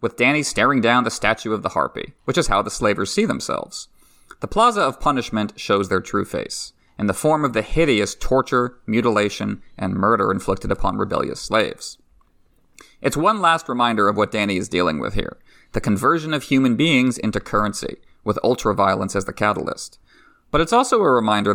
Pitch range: 100-130 Hz